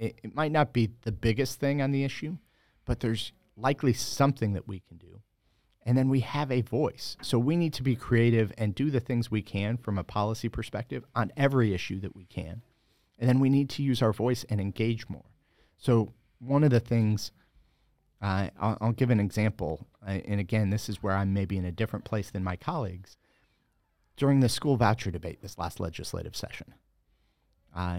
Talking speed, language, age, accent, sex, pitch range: 195 wpm, English, 40-59, American, male, 95-120 Hz